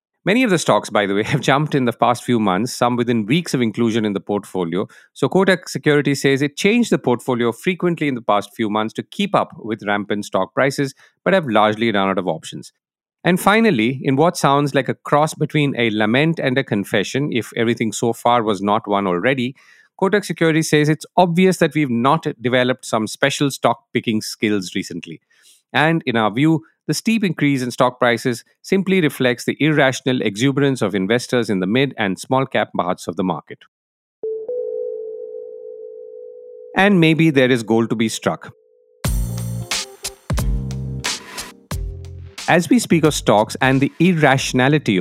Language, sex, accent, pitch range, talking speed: English, male, Indian, 110-160 Hz, 170 wpm